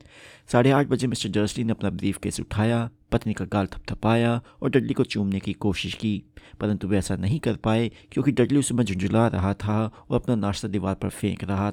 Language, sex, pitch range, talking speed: Hindi, male, 100-120 Hz, 205 wpm